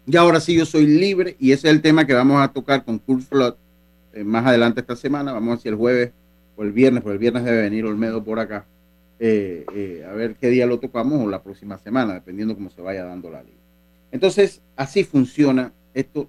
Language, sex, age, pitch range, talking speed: Spanish, male, 40-59, 100-140 Hz, 230 wpm